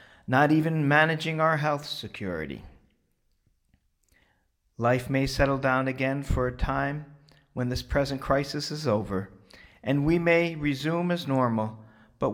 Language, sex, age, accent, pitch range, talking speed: English, male, 40-59, American, 100-150 Hz, 130 wpm